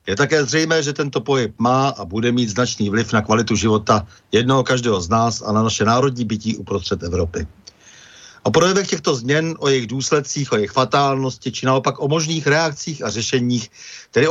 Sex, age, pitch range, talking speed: male, 50-69, 110-145 Hz, 185 wpm